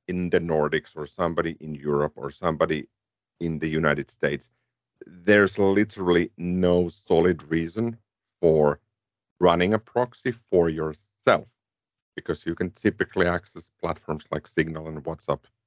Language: English